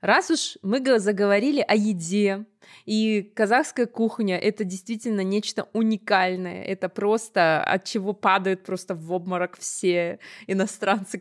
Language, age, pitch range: Russian, 20-39, 185-230 Hz